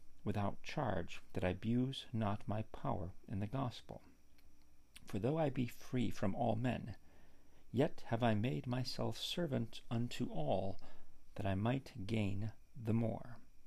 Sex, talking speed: male, 145 wpm